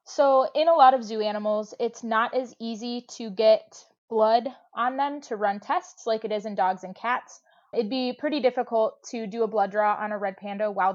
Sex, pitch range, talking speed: female, 210-240 Hz, 220 wpm